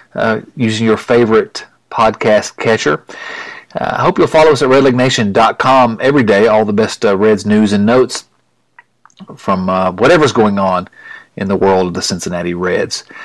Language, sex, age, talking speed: English, male, 40-59, 160 wpm